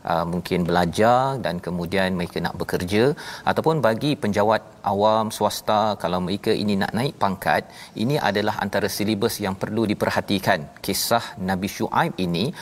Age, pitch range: 40-59, 100-130 Hz